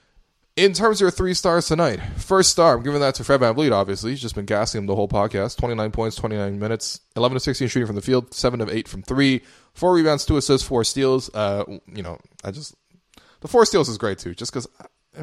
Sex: male